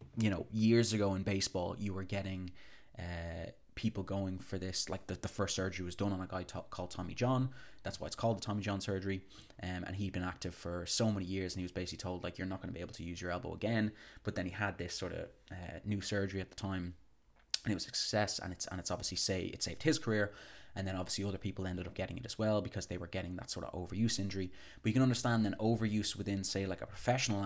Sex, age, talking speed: male, 20-39, 265 wpm